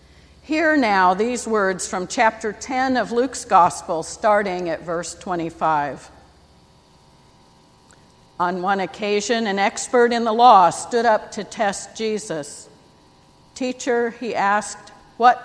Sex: female